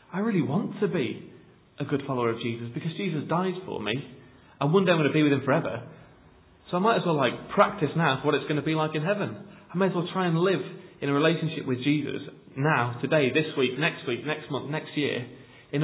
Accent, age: British, 30-49